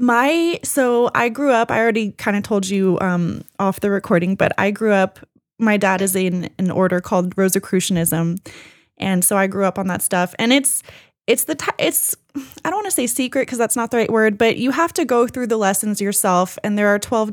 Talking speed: 230 wpm